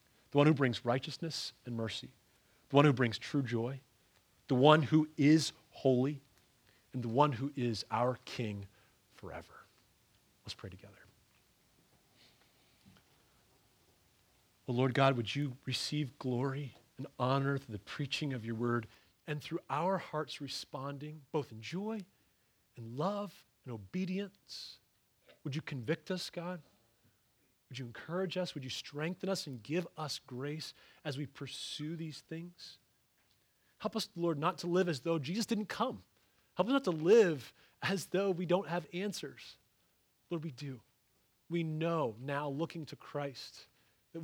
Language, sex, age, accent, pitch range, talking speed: English, male, 40-59, American, 120-155 Hz, 150 wpm